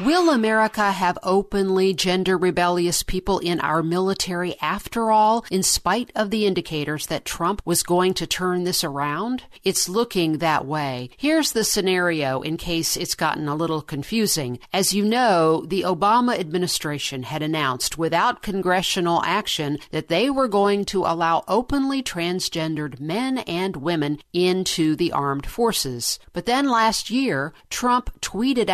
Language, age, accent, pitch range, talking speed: English, 50-69, American, 160-215 Hz, 145 wpm